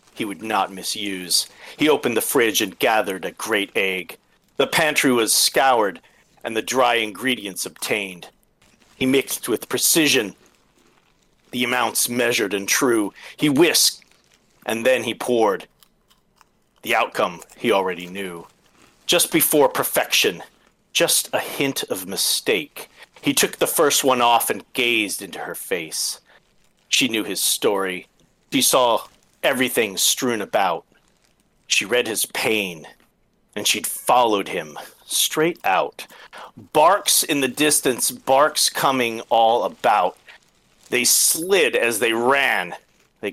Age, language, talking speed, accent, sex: 40-59, English, 130 wpm, American, male